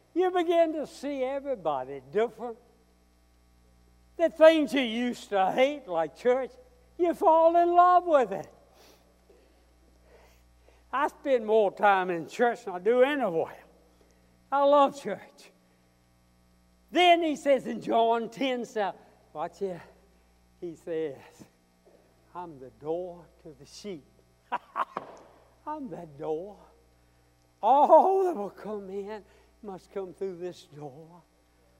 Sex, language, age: male, English, 60-79